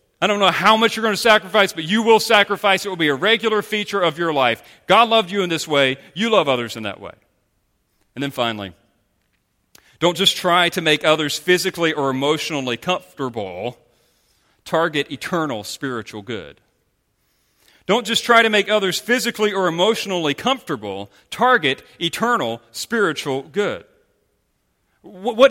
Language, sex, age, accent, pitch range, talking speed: English, male, 40-59, American, 150-235 Hz, 155 wpm